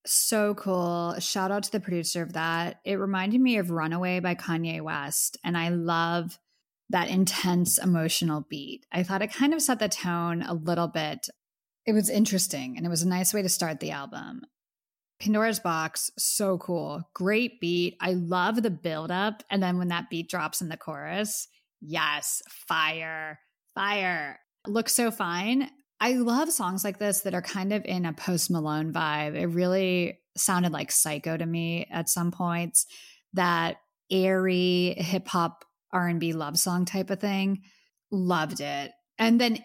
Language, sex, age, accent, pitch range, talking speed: English, female, 10-29, American, 165-205 Hz, 170 wpm